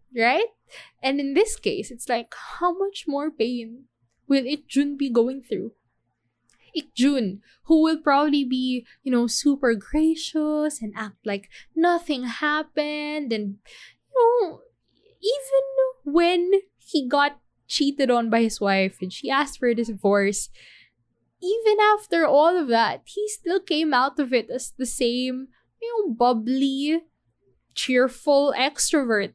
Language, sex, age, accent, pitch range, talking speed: English, female, 20-39, Filipino, 240-325 Hz, 140 wpm